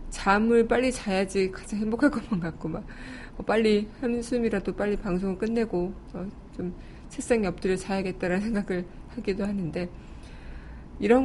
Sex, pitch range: female, 180-220 Hz